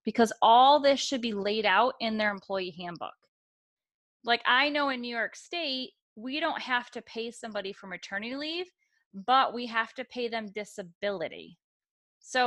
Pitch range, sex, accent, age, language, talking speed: 195-245 Hz, female, American, 30-49, English, 170 wpm